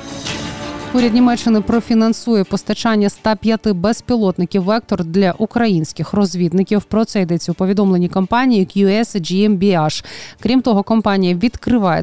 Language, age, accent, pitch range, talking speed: Ukrainian, 20-39, native, 170-215 Hz, 105 wpm